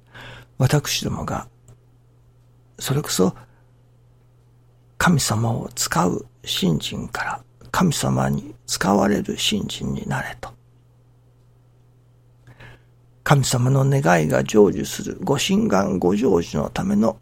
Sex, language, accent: male, Japanese, native